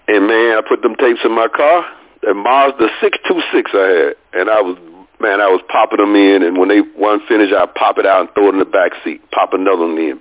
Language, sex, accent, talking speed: English, male, American, 255 wpm